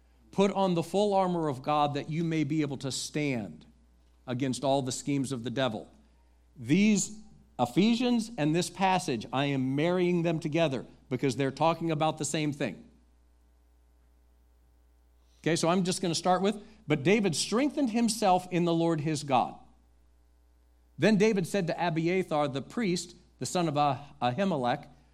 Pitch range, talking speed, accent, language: 120-190 Hz, 160 wpm, American, English